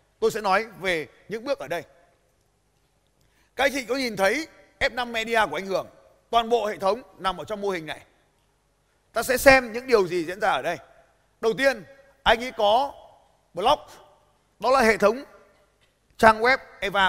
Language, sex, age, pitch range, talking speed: Vietnamese, male, 20-39, 200-275 Hz, 185 wpm